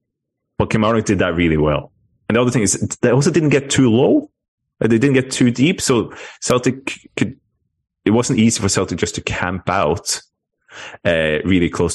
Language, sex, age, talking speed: English, male, 30-49, 185 wpm